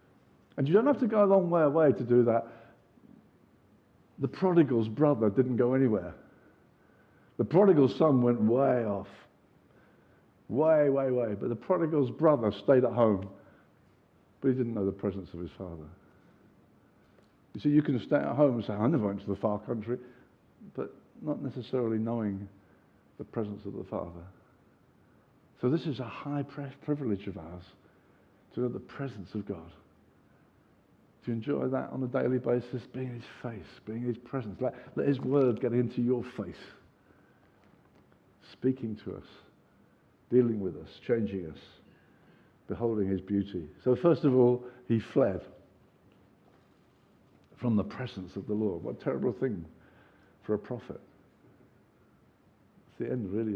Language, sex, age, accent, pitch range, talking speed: English, male, 50-69, British, 100-135 Hz, 155 wpm